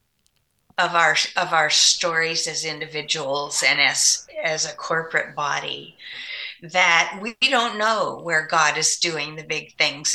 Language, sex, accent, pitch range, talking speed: English, female, American, 160-200 Hz, 140 wpm